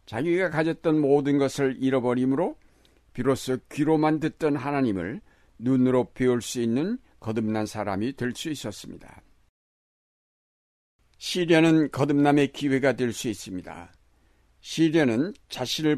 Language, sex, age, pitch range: Korean, male, 60-79, 120-150 Hz